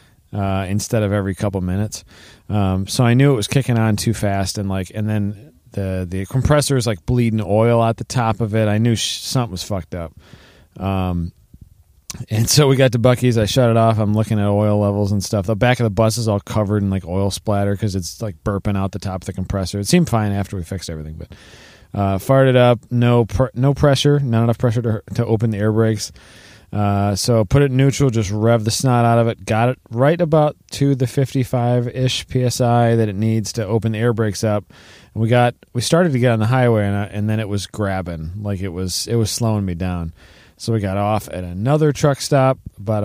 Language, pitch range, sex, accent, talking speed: English, 100-125 Hz, male, American, 235 wpm